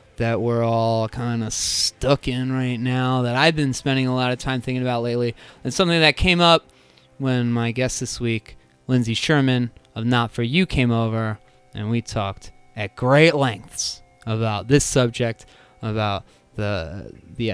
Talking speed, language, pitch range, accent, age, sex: 170 wpm, English, 120-175 Hz, American, 20-39, male